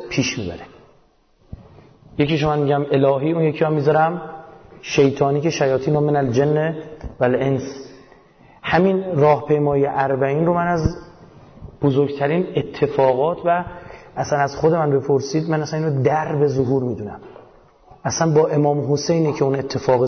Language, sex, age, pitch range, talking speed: Persian, male, 30-49, 135-160 Hz, 135 wpm